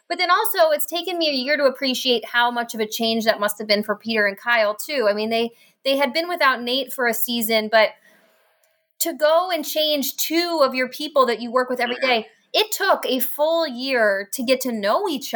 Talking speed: 235 wpm